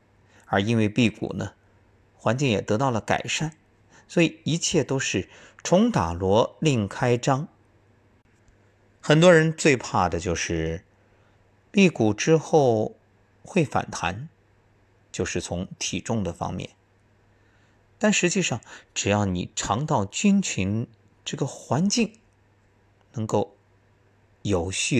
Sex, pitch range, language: male, 95-115 Hz, Chinese